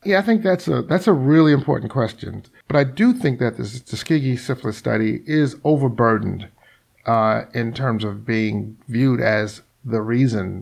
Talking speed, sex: 170 wpm, male